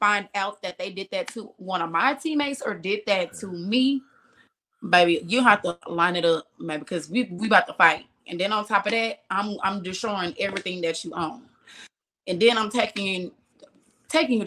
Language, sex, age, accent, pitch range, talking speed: English, female, 20-39, American, 185-250 Hz, 205 wpm